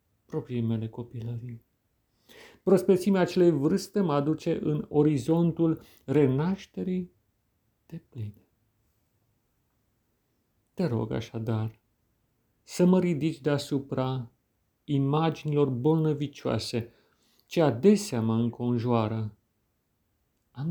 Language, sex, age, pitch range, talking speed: Romanian, male, 50-69, 110-150 Hz, 80 wpm